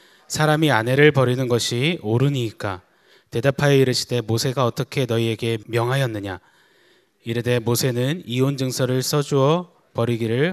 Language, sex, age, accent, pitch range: Korean, male, 20-39, native, 115-140 Hz